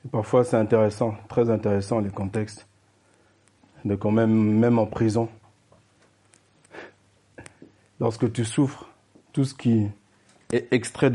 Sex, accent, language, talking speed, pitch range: male, French, French, 120 wpm, 105-130 Hz